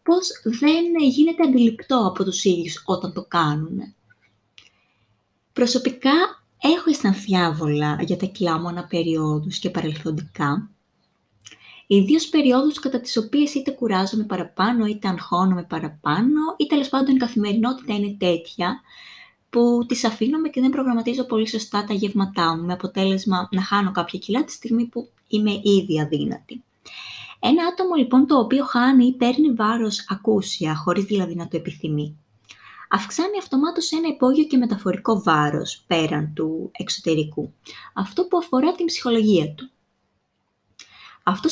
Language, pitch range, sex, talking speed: Greek, 175-270 Hz, female, 130 wpm